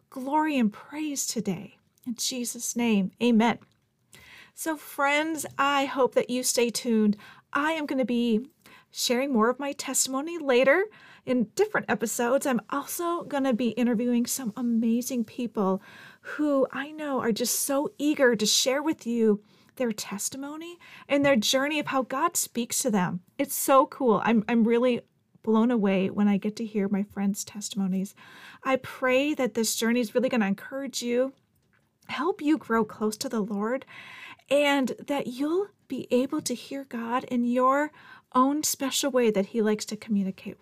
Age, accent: 40-59, American